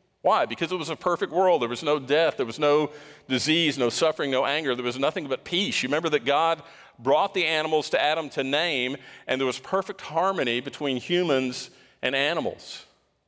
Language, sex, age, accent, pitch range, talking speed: English, male, 50-69, American, 125-155 Hz, 200 wpm